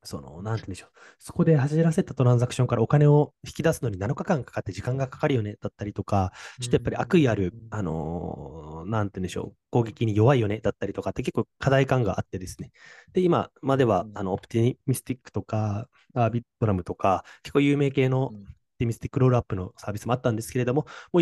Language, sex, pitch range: Japanese, male, 100-140 Hz